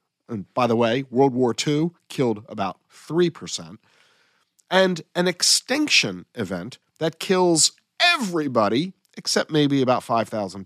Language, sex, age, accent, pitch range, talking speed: English, male, 40-59, American, 135-195 Hz, 120 wpm